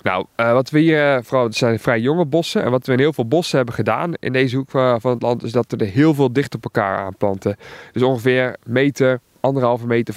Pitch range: 115-150 Hz